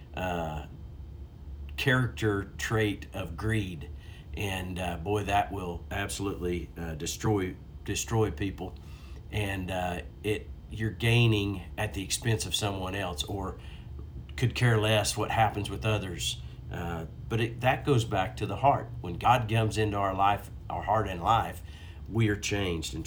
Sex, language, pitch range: male, English, 80-110 Hz